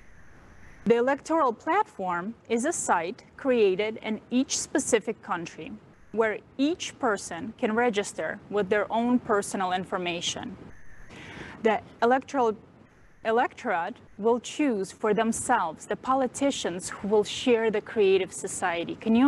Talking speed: 115 wpm